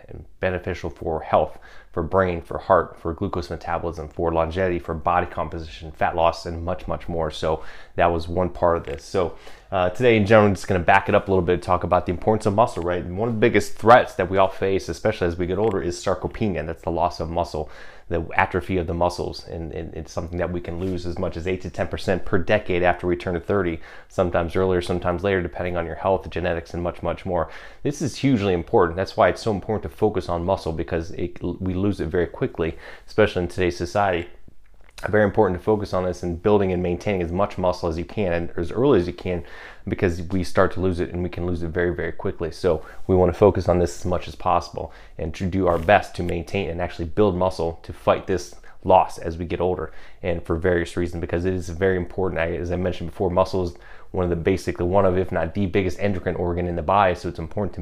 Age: 30-49